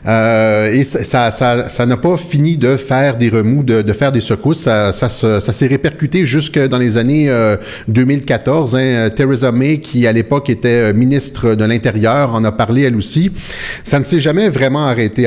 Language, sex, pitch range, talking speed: French, male, 115-150 Hz, 200 wpm